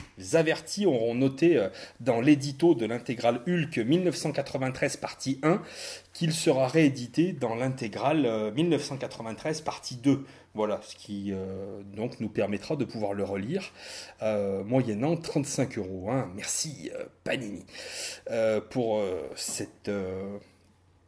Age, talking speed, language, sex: 30-49, 125 wpm, French, male